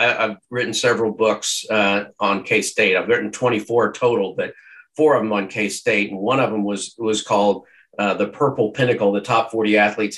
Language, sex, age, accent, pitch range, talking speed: English, male, 50-69, American, 105-135 Hz, 190 wpm